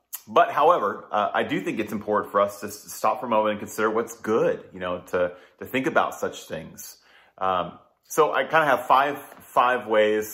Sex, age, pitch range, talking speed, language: male, 30-49, 95-115 Hz, 215 wpm, English